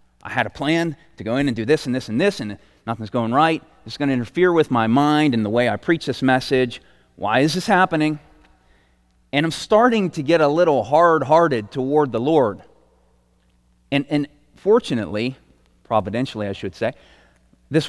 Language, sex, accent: English, male, American